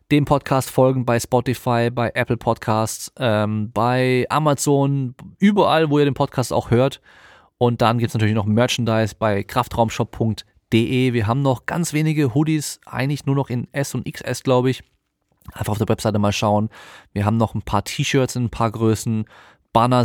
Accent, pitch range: German, 110-135 Hz